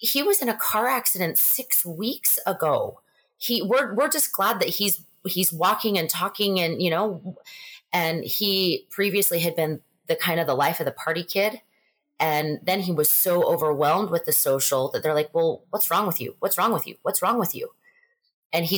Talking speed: 205 wpm